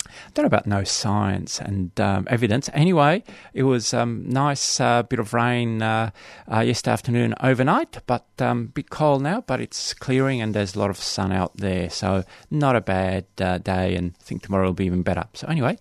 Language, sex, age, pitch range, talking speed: English, male, 30-49, 100-125 Hz, 215 wpm